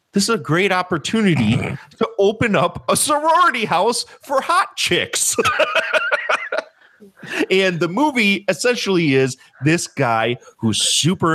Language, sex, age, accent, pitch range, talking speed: English, male, 30-49, American, 130-200 Hz, 120 wpm